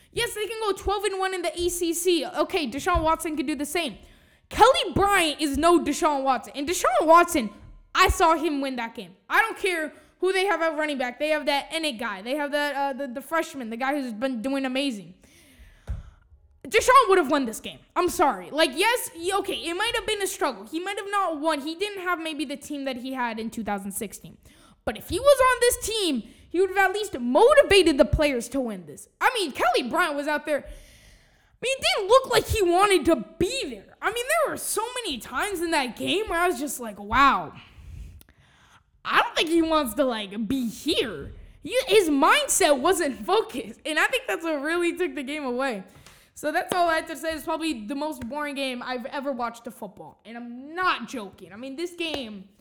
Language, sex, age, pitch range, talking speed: English, female, 10-29, 270-365 Hz, 220 wpm